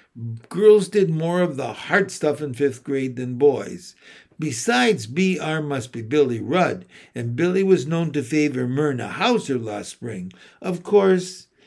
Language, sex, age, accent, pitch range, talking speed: English, male, 60-79, American, 135-185 Hz, 155 wpm